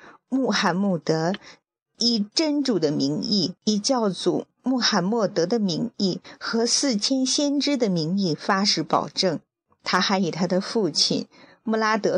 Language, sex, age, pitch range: Chinese, female, 50-69, 175-230 Hz